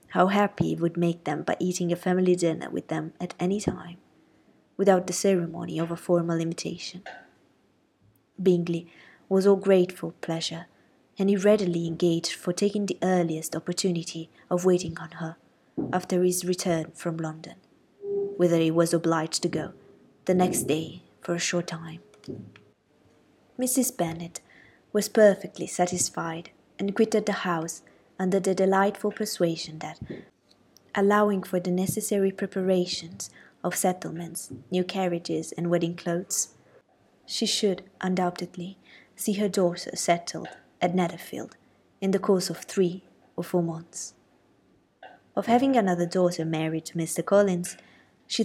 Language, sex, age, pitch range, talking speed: Italian, female, 20-39, 170-195 Hz, 135 wpm